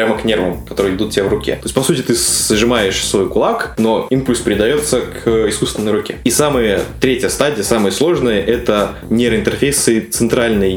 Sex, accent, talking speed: male, native, 175 wpm